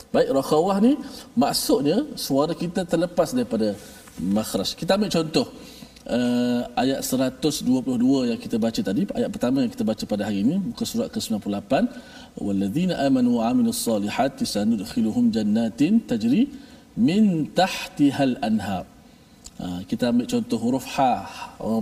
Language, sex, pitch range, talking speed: Malayalam, male, 160-250 Hz, 130 wpm